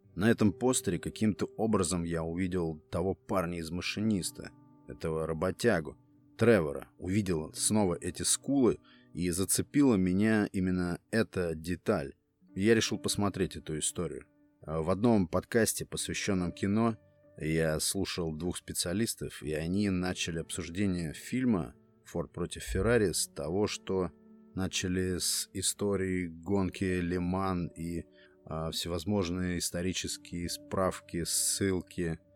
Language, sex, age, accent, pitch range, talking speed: Russian, male, 30-49, native, 85-100 Hz, 110 wpm